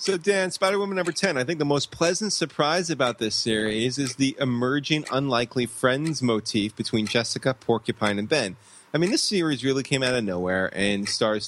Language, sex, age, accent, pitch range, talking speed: English, male, 30-49, American, 105-135 Hz, 190 wpm